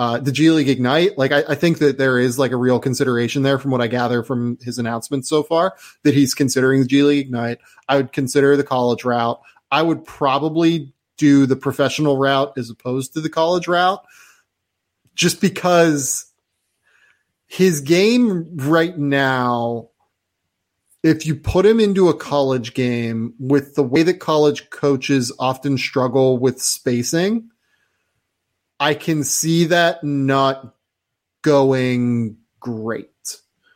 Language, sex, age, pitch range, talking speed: English, male, 30-49, 120-150 Hz, 150 wpm